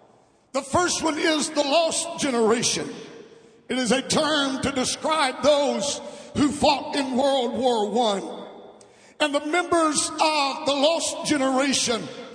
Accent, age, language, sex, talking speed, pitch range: American, 60-79, English, male, 130 wpm, 260-295 Hz